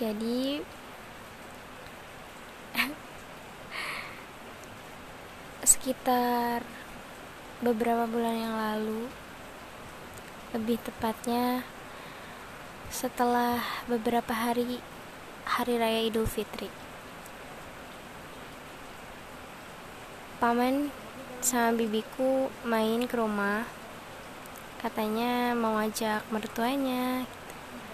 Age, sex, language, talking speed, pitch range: 20-39, female, Indonesian, 55 wpm, 220-245 Hz